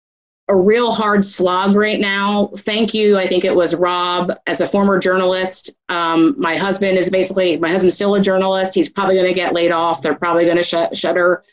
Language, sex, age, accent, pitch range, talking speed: English, female, 30-49, American, 170-205 Hz, 200 wpm